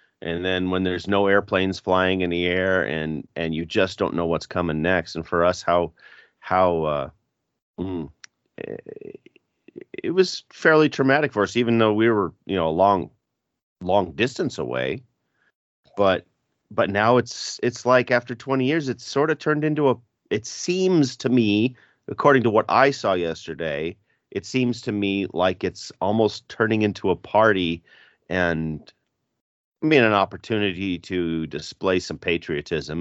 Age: 30-49